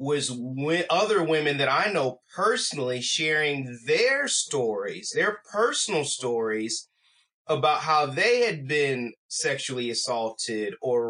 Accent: American